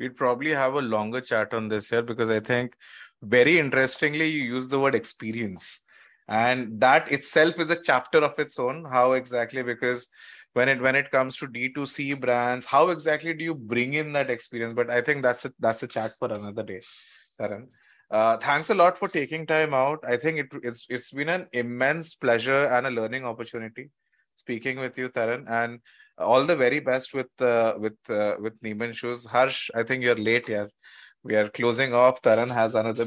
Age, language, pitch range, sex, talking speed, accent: 20-39, English, 115-140 Hz, male, 200 wpm, Indian